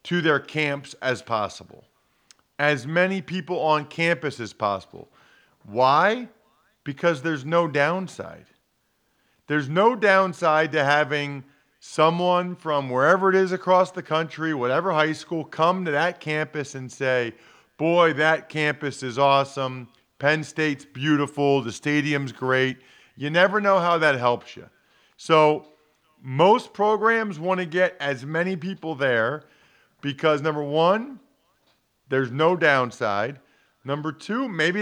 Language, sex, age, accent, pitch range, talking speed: English, male, 40-59, American, 145-185 Hz, 130 wpm